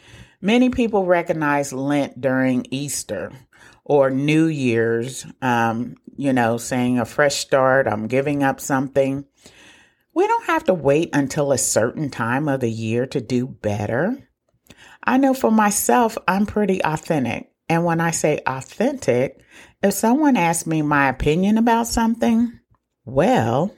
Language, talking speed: English, 140 wpm